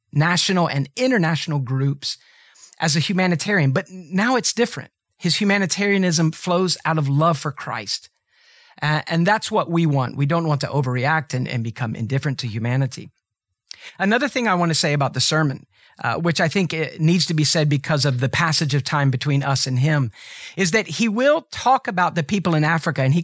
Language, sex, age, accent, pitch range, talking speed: English, male, 40-59, American, 140-185 Hz, 195 wpm